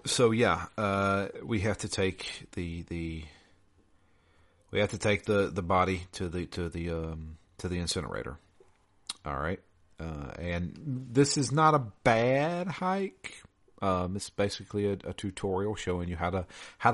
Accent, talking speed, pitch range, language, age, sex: American, 160 wpm, 85-100 Hz, English, 40-59, male